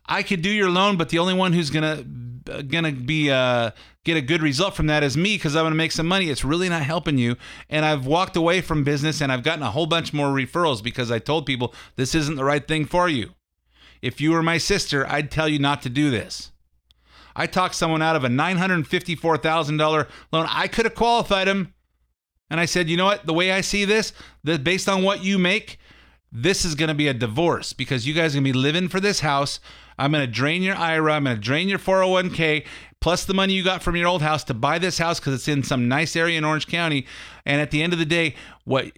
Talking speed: 250 wpm